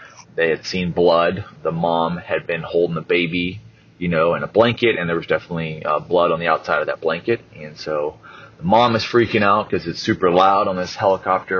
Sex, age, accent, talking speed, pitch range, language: male, 30-49, American, 215 wpm, 85-105 Hz, English